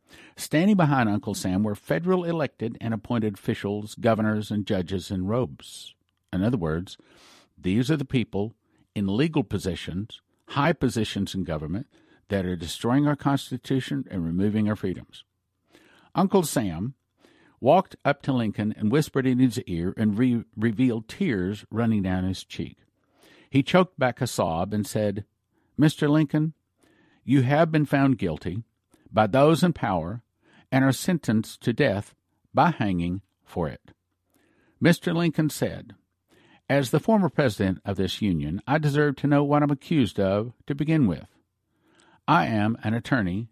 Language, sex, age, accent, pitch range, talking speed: English, male, 50-69, American, 100-140 Hz, 150 wpm